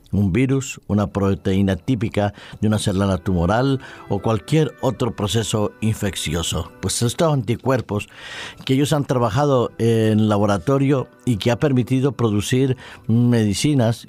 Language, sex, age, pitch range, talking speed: Spanish, male, 50-69, 105-125 Hz, 125 wpm